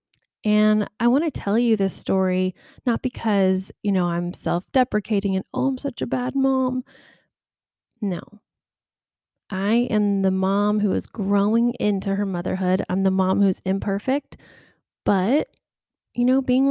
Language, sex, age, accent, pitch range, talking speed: English, female, 20-39, American, 195-235 Hz, 145 wpm